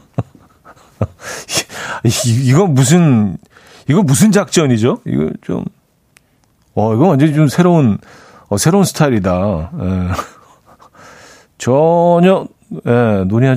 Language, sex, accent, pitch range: Korean, male, native, 110-155 Hz